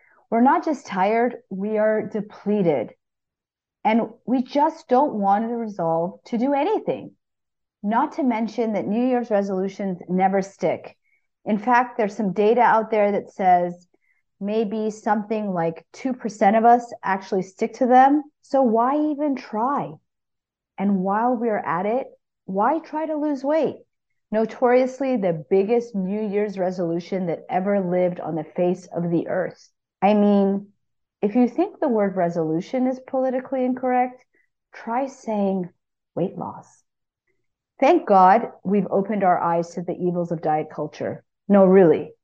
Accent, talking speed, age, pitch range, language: American, 145 wpm, 40-59, 180-240 Hz, English